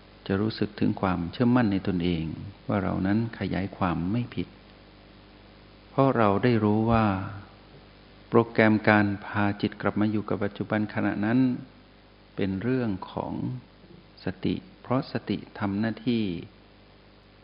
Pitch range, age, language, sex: 100-115 Hz, 60-79, Thai, male